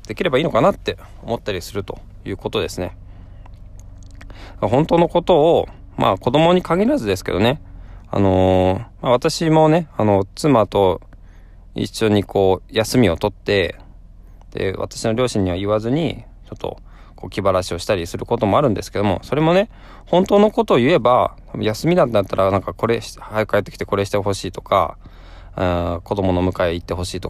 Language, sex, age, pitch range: Japanese, male, 20-39, 90-125 Hz